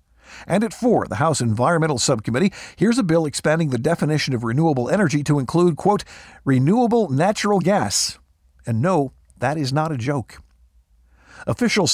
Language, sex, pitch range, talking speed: English, male, 120-175 Hz, 150 wpm